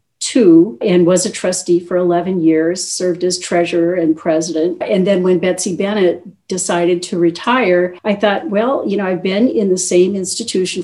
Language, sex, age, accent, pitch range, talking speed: English, female, 50-69, American, 170-195 Hz, 175 wpm